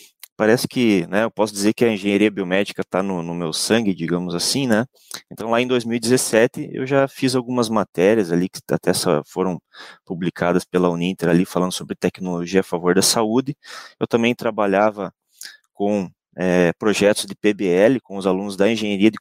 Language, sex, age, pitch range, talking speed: Portuguese, male, 20-39, 95-115 Hz, 170 wpm